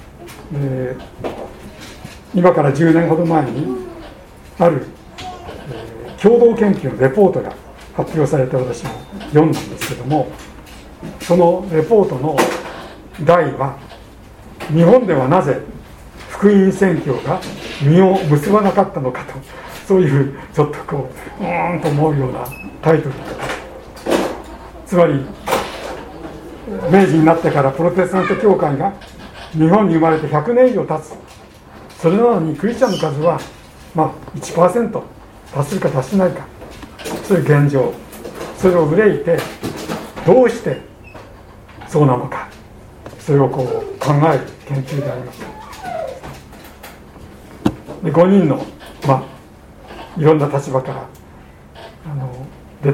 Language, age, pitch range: Japanese, 60-79, 135-180 Hz